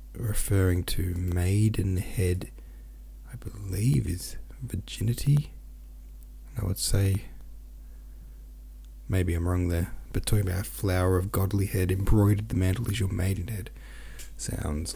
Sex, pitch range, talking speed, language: male, 65-105 Hz, 110 wpm, English